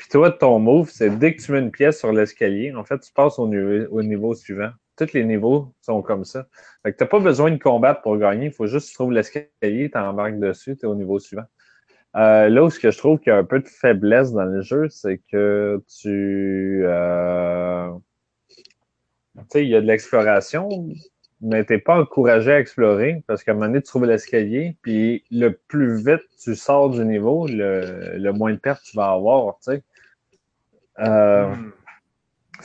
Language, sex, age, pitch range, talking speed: French, male, 20-39, 105-140 Hz, 205 wpm